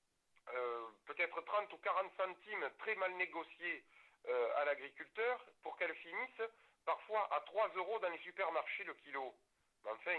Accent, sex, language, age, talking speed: French, male, French, 60-79, 155 wpm